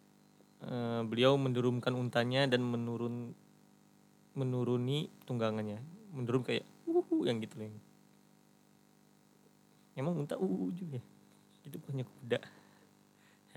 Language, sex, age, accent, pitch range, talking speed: Indonesian, male, 20-39, native, 110-130 Hz, 95 wpm